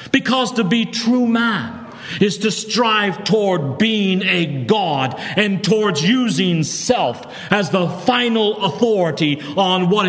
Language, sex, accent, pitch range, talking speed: English, male, American, 125-185 Hz, 130 wpm